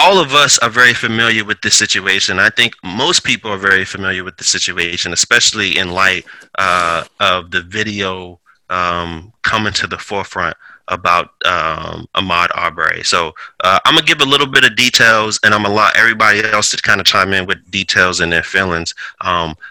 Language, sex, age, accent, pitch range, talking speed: English, male, 30-49, American, 90-110 Hz, 195 wpm